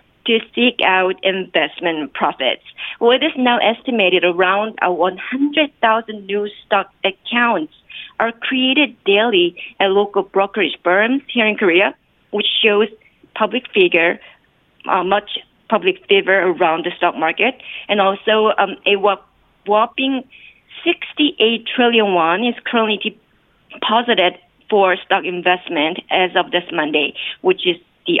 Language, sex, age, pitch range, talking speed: English, female, 40-59, 185-240 Hz, 125 wpm